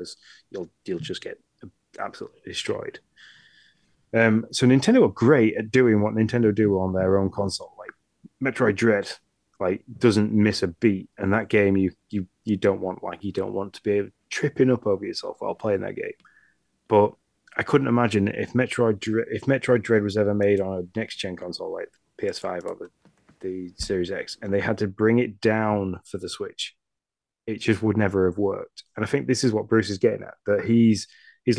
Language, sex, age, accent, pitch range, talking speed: English, male, 30-49, British, 95-115 Hz, 195 wpm